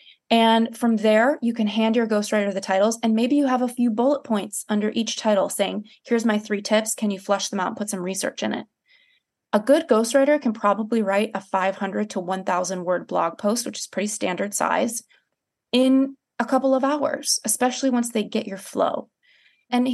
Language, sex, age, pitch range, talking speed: English, female, 20-39, 200-260 Hz, 200 wpm